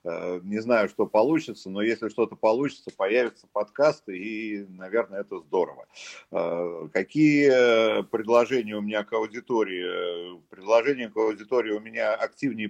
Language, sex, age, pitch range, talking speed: Russian, male, 50-69, 95-115 Hz, 125 wpm